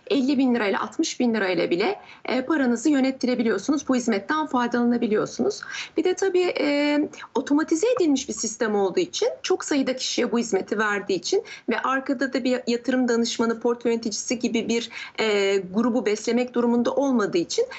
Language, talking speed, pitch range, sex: Turkish, 155 wpm, 230-300 Hz, female